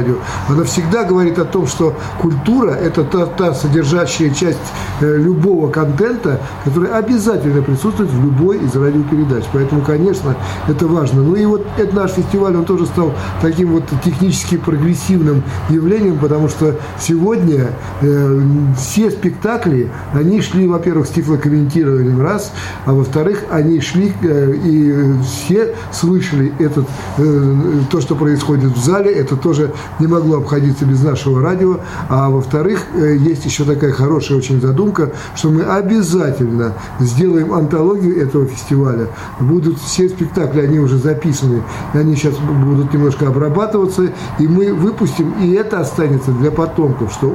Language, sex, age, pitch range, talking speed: Russian, male, 60-79, 140-175 Hz, 135 wpm